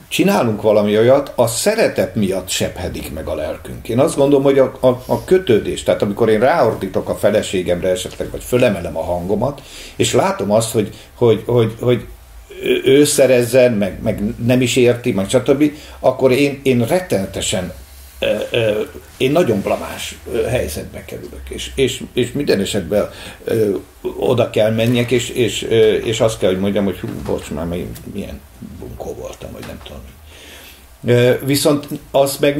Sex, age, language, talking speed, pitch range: male, 50-69, English, 150 wpm, 95-125 Hz